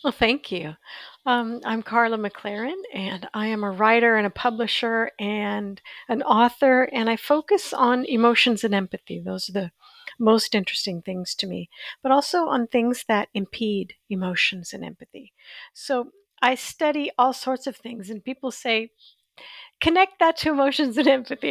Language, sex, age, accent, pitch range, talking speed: English, female, 50-69, American, 210-265 Hz, 160 wpm